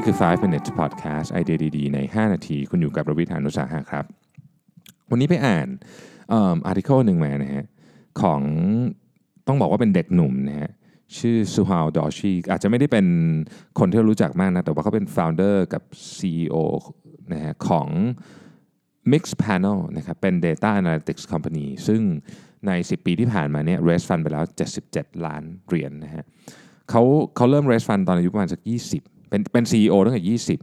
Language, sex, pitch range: Thai, male, 80-110 Hz